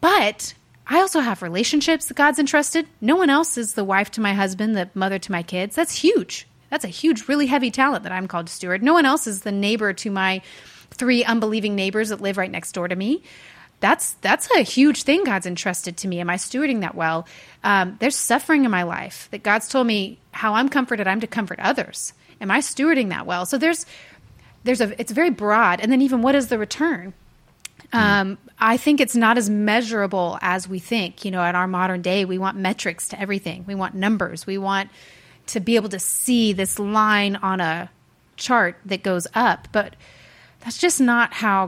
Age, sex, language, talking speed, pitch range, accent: 30-49, female, English, 210 wpm, 190-260 Hz, American